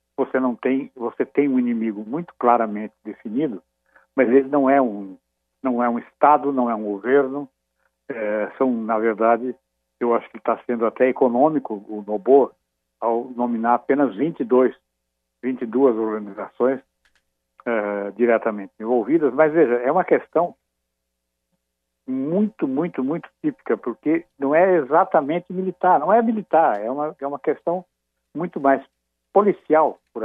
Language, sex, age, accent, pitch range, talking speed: Portuguese, male, 60-79, Brazilian, 100-135 Hz, 140 wpm